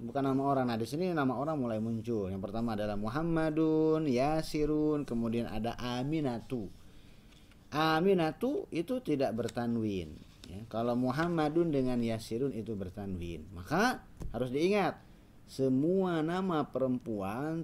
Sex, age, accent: male, 30-49, native